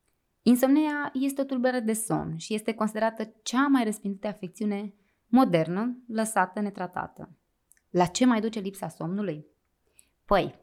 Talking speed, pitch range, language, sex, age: 125 wpm, 185-250 Hz, Romanian, female, 20-39